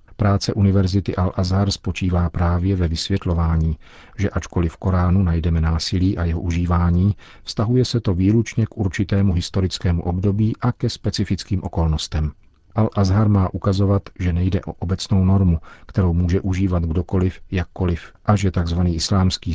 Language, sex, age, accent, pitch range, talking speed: Czech, male, 40-59, native, 85-100 Hz, 140 wpm